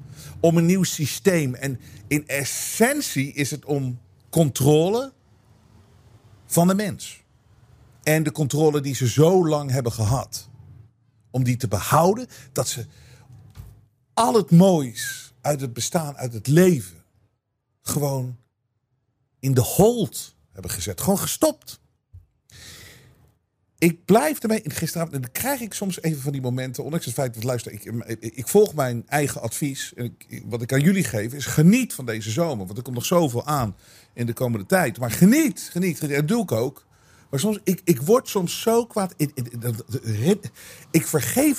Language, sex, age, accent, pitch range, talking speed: Dutch, male, 50-69, Dutch, 115-175 Hz, 160 wpm